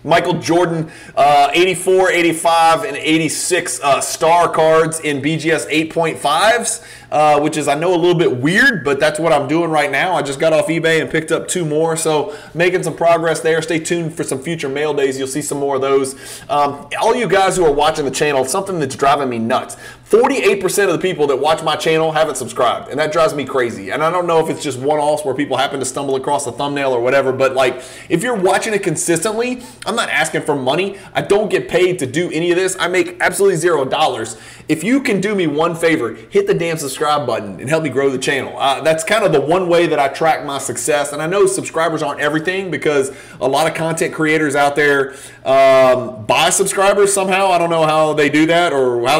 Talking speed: 230 wpm